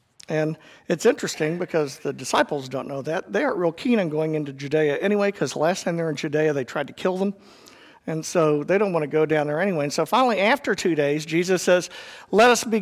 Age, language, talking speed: 50-69, English, 240 wpm